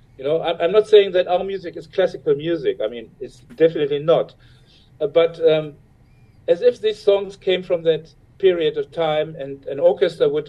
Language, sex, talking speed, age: English, male, 190 wpm, 50-69